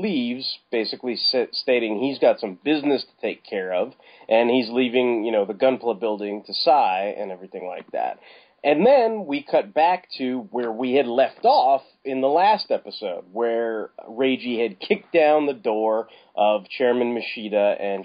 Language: English